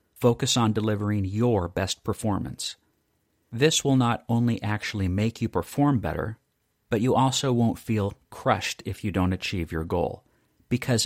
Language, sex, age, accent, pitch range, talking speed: English, male, 40-59, American, 95-120 Hz, 150 wpm